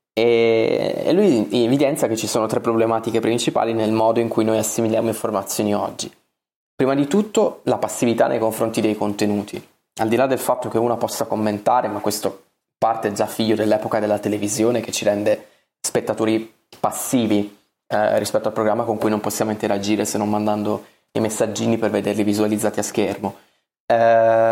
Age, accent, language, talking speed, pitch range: 20-39, native, Italian, 165 wpm, 105-115 Hz